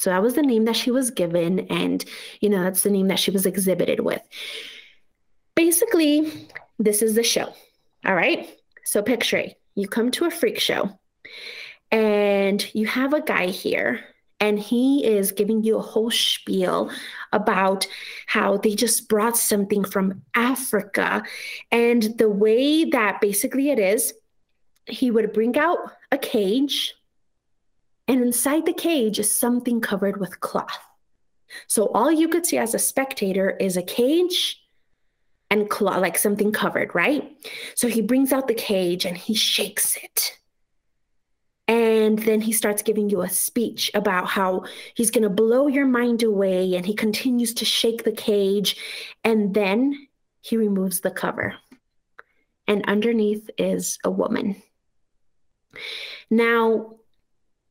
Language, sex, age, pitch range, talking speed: English, female, 30-49, 205-250 Hz, 150 wpm